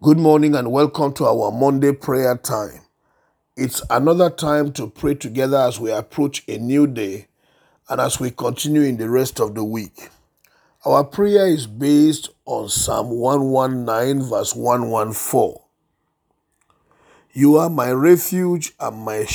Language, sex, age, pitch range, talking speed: English, male, 50-69, 120-150 Hz, 145 wpm